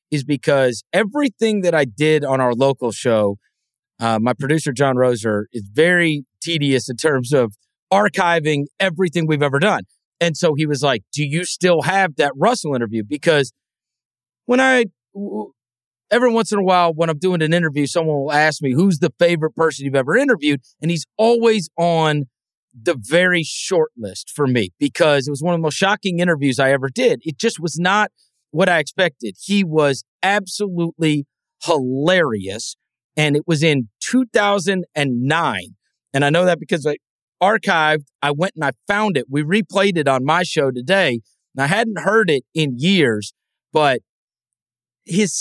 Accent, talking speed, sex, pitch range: American, 170 wpm, male, 140-195 Hz